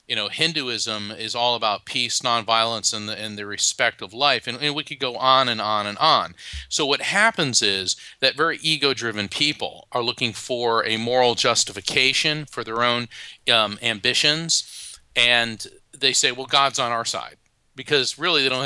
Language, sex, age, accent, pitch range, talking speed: English, male, 40-59, American, 105-130 Hz, 180 wpm